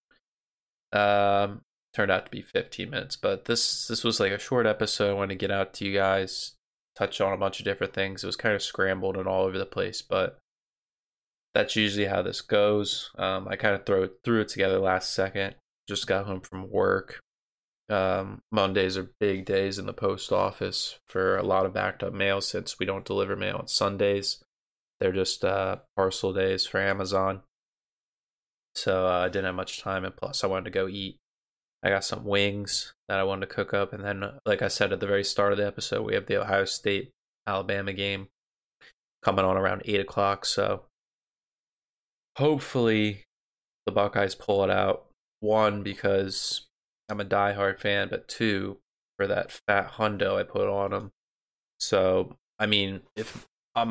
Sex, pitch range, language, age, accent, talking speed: male, 95-105 Hz, English, 20-39, American, 185 wpm